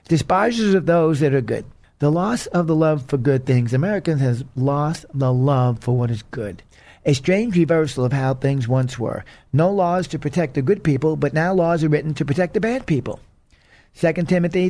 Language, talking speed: English, 205 wpm